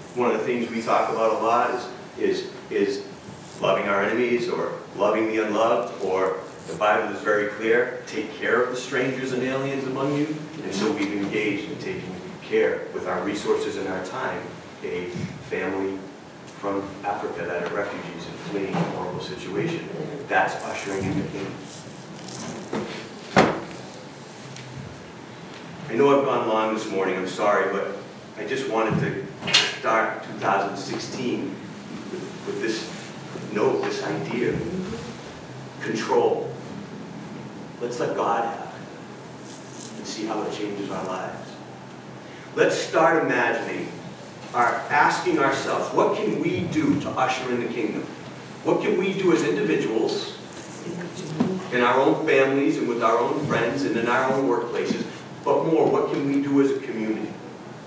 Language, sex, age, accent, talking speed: English, male, 40-59, American, 145 wpm